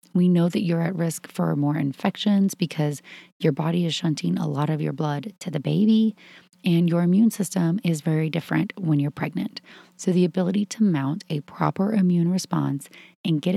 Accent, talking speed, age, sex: American, 190 wpm, 30-49, female